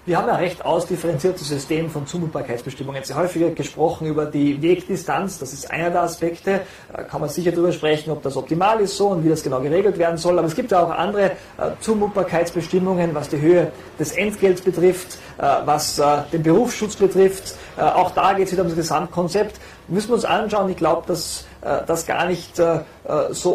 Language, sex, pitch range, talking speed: German, male, 155-185 Hz, 190 wpm